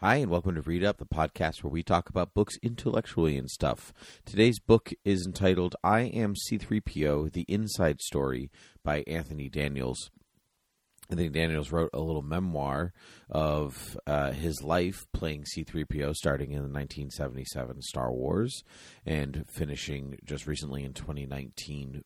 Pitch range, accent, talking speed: 70-90 Hz, American, 145 wpm